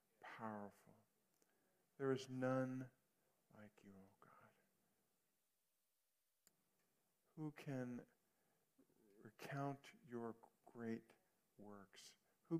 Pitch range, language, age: 105-125 Hz, English, 50-69